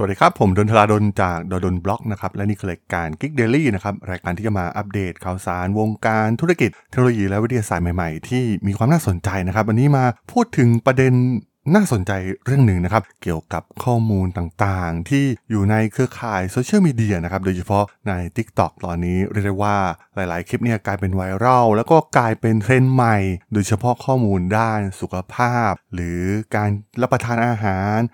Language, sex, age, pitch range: Thai, male, 20-39, 95-125 Hz